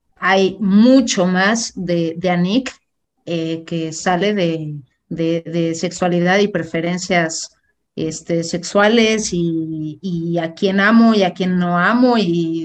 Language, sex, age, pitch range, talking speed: Spanish, female, 30-49, 175-230 Hz, 135 wpm